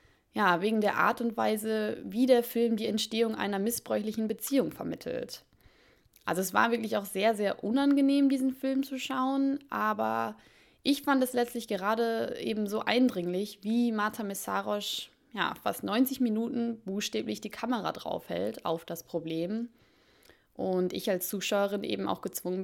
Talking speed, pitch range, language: 150 wpm, 180-235 Hz, German